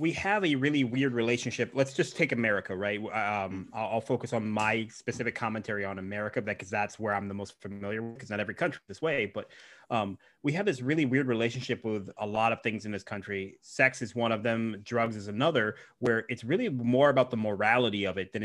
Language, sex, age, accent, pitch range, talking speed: English, male, 30-49, American, 110-130 Hz, 225 wpm